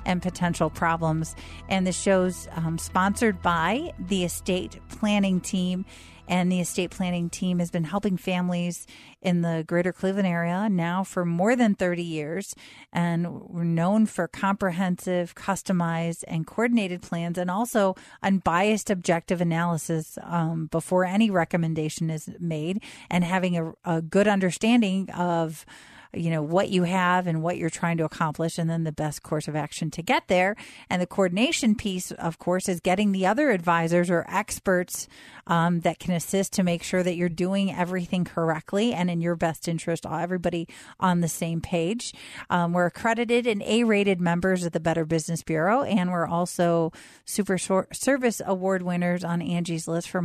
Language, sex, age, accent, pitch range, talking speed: English, female, 40-59, American, 165-190 Hz, 165 wpm